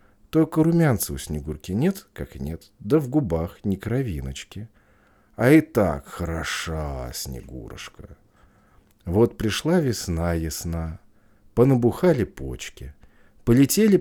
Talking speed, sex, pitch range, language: 105 wpm, male, 75-120 Hz, Russian